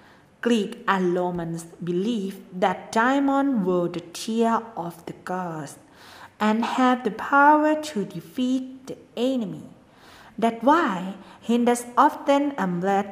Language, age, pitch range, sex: Thai, 40-59, 185-250 Hz, female